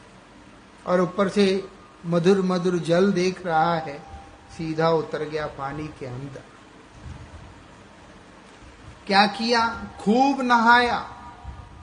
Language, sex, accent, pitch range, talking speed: English, male, Indian, 190-240 Hz, 95 wpm